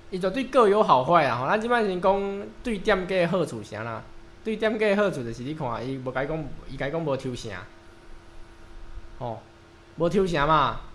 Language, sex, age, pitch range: Chinese, male, 20-39, 115-185 Hz